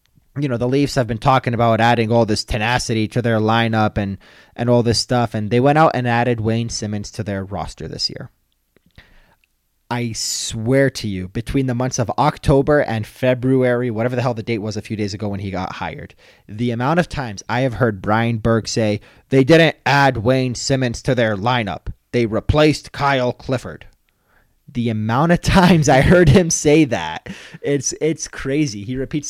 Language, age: English, 30-49